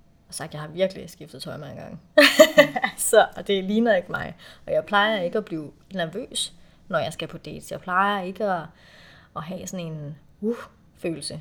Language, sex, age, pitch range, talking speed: Danish, female, 30-49, 175-220 Hz, 190 wpm